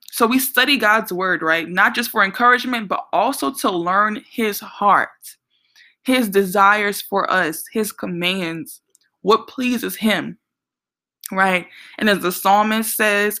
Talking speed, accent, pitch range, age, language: 140 wpm, American, 185-225 Hz, 20-39, English